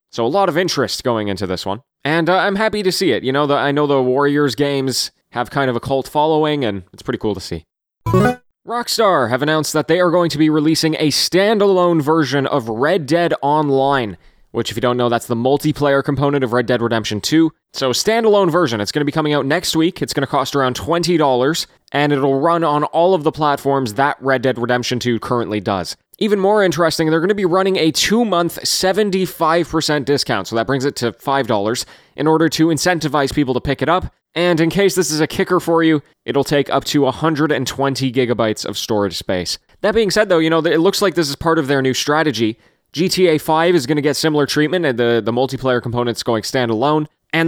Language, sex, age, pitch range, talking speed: English, male, 20-39, 130-170 Hz, 220 wpm